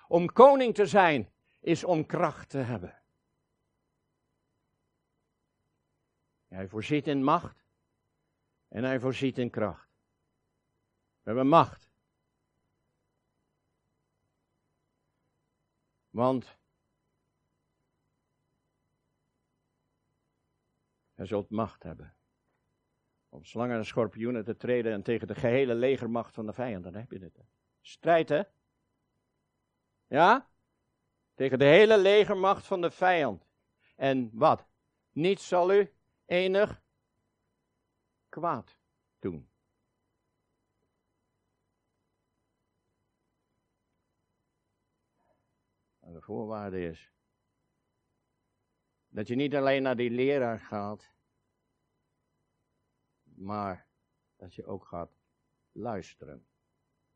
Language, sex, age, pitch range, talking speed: Dutch, male, 60-79, 110-155 Hz, 80 wpm